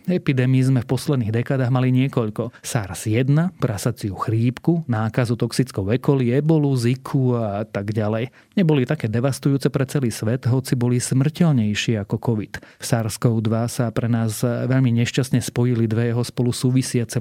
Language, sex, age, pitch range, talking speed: Slovak, male, 30-49, 115-130 Hz, 145 wpm